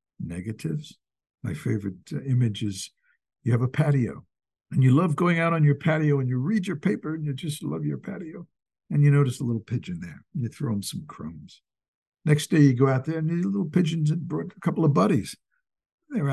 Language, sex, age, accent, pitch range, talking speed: English, male, 60-79, American, 115-165 Hz, 215 wpm